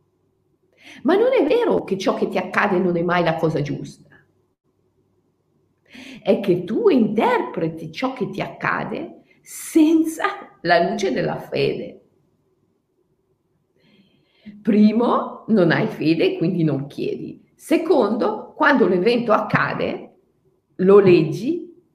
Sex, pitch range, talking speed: female, 160-230 Hz, 115 wpm